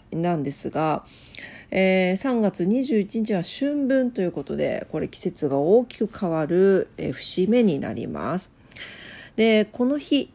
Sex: female